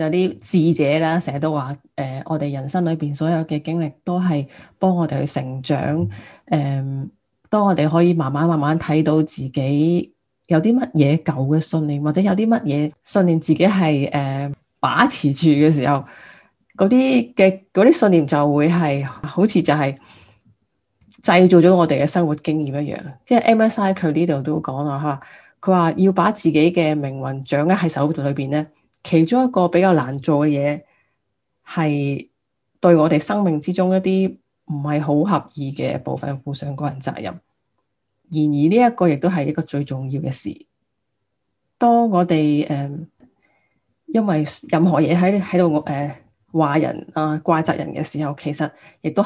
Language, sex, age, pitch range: Chinese, female, 30-49, 140-170 Hz